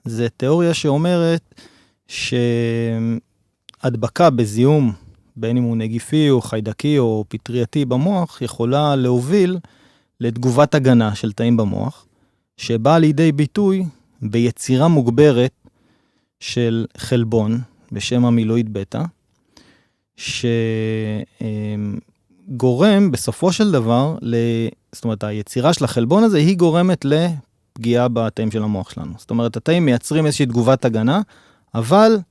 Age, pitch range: 30-49, 115-150 Hz